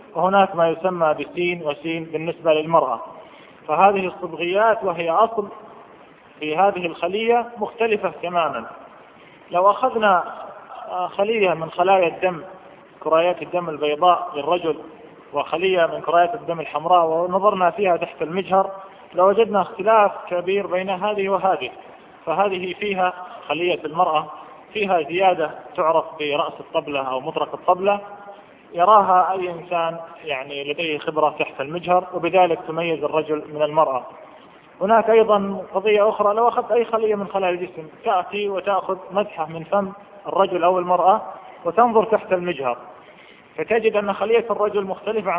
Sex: male